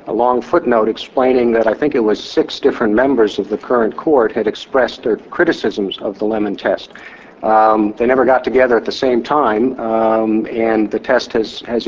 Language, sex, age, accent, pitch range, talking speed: English, male, 50-69, American, 110-125 Hz, 195 wpm